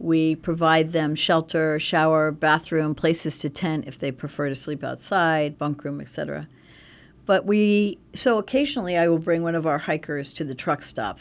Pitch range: 155-180 Hz